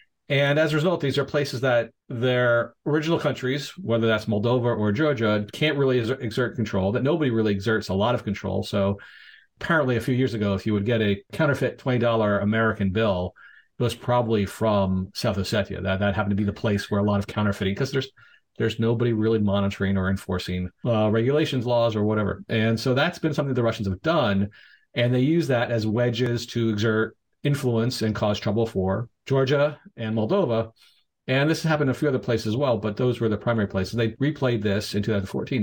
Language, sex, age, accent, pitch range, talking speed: English, male, 40-59, American, 105-130 Hz, 205 wpm